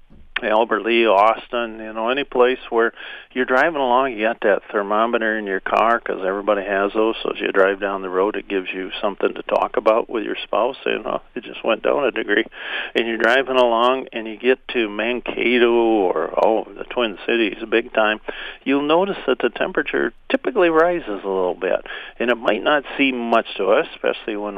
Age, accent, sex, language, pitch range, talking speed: 50-69, American, male, English, 100-115 Hz, 200 wpm